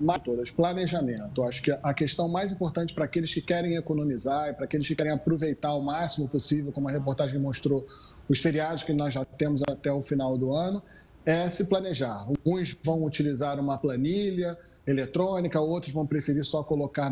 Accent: Brazilian